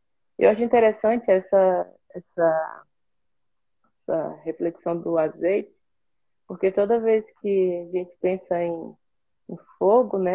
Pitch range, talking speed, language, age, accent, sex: 170-200 Hz, 115 wpm, Portuguese, 20-39, Brazilian, female